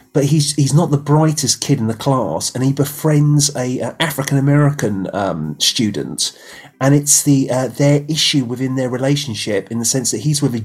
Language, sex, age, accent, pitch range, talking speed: English, male, 30-49, British, 110-135 Hz, 190 wpm